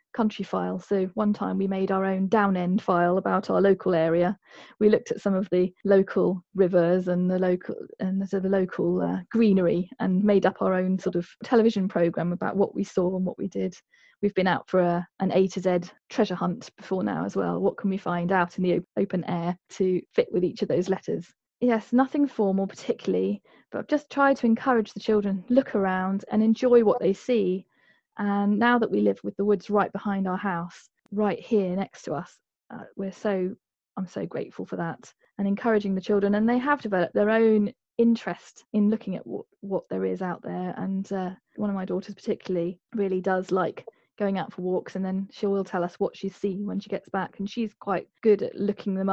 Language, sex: English, female